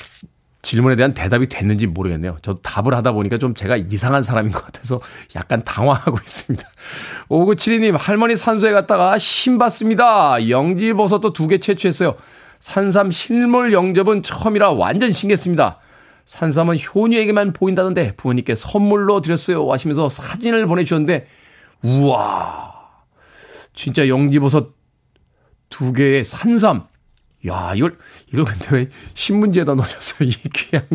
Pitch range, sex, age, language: 125-190 Hz, male, 40-59, Korean